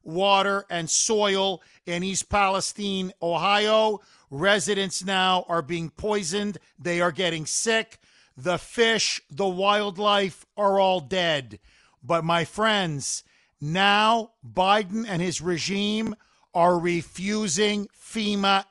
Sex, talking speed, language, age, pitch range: male, 110 wpm, English, 50-69, 180-210 Hz